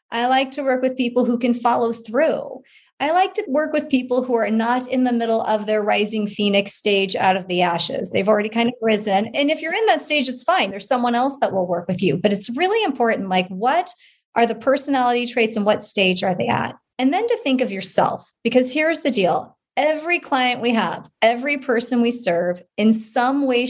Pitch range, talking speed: 205-265 Hz, 225 wpm